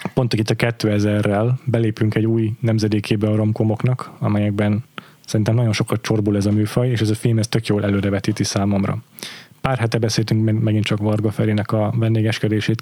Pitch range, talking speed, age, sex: 110-125 Hz, 170 wpm, 20-39, male